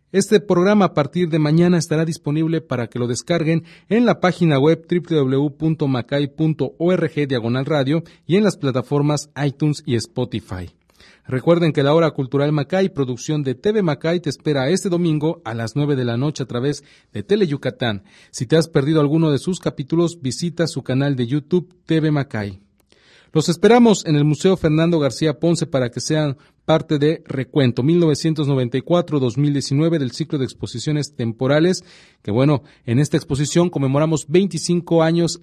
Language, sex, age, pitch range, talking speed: English, male, 40-59, 130-165 Hz, 155 wpm